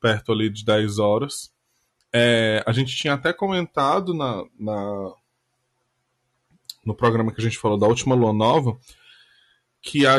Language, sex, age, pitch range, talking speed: Portuguese, male, 10-29, 115-140 Hz, 145 wpm